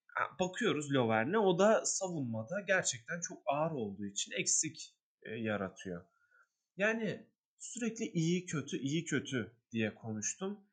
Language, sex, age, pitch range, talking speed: Turkish, male, 30-49, 125-185 Hz, 115 wpm